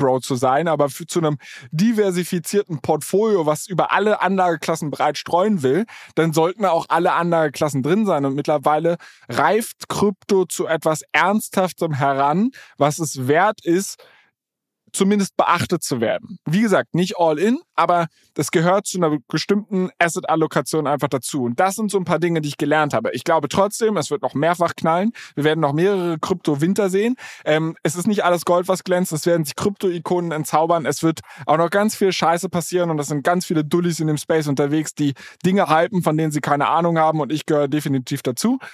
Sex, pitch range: male, 150-185 Hz